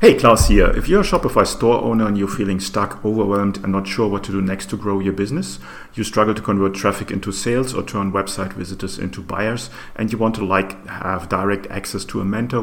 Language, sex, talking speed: English, male, 235 wpm